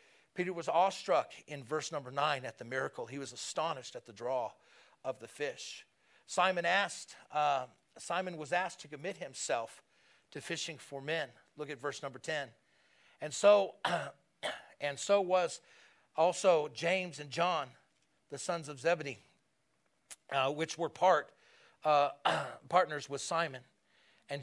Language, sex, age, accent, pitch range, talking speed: English, male, 40-59, American, 140-180 Hz, 145 wpm